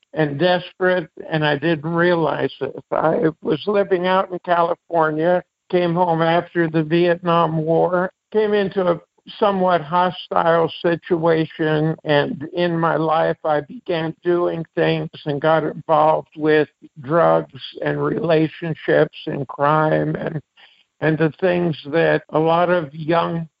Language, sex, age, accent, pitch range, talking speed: English, male, 60-79, American, 160-180 Hz, 130 wpm